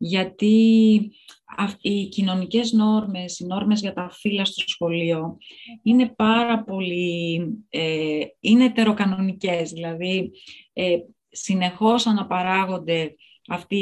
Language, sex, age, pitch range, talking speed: Greek, female, 30-49, 175-220 Hz, 100 wpm